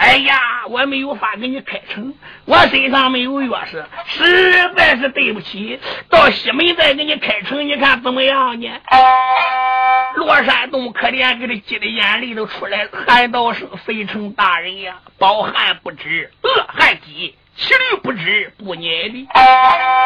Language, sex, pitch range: Chinese, male, 220-290 Hz